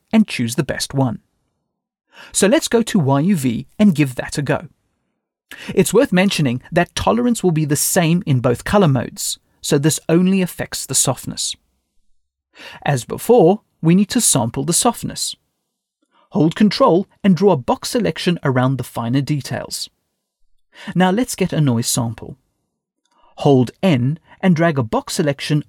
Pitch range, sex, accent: 130-190 Hz, male, British